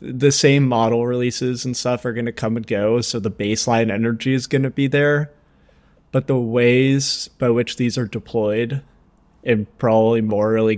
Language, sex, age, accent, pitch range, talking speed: English, male, 20-39, American, 110-130 Hz, 180 wpm